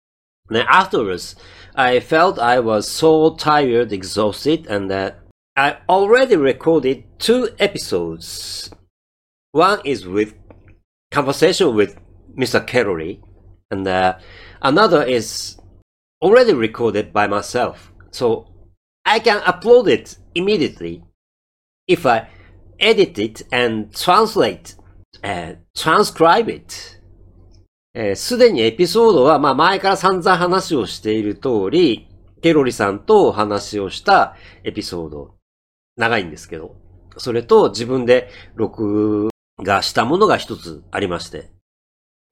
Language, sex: Japanese, male